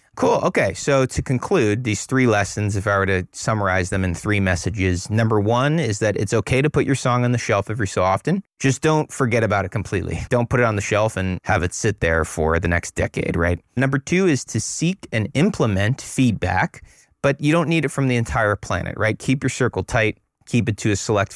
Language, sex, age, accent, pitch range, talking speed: English, male, 30-49, American, 95-125 Hz, 230 wpm